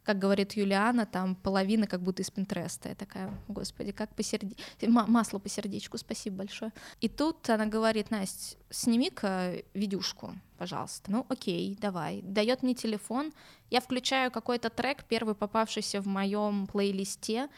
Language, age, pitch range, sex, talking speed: Russian, 20-39, 195-225 Hz, female, 145 wpm